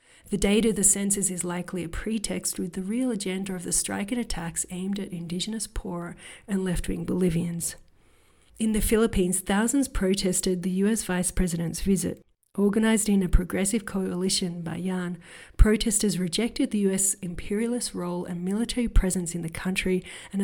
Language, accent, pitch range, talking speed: English, Australian, 180-210 Hz, 165 wpm